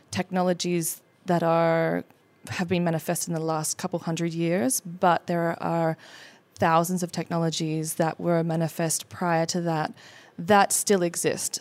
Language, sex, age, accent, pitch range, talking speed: English, female, 20-39, Australian, 165-185 Hz, 140 wpm